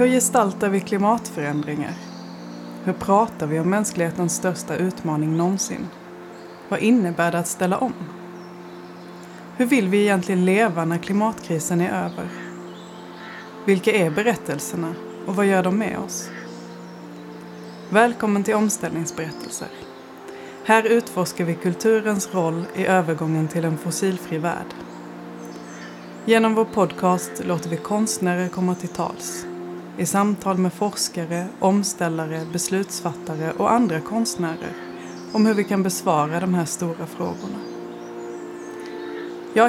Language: Swedish